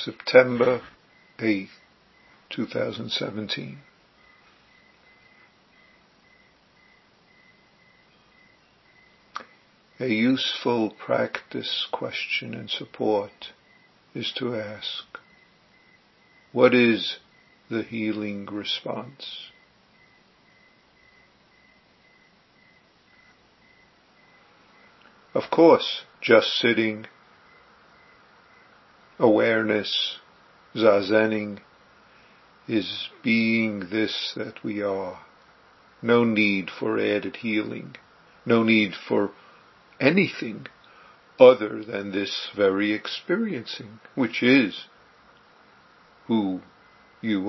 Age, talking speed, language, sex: 50-69, 60 wpm, English, male